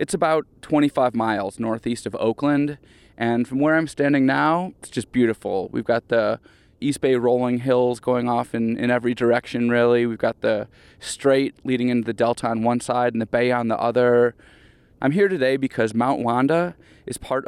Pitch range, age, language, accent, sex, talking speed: 115-150 Hz, 20-39, English, American, male, 190 wpm